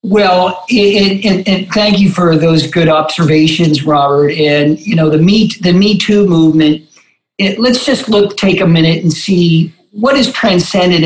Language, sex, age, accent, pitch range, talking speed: English, male, 50-69, American, 165-205 Hz, 175 wpm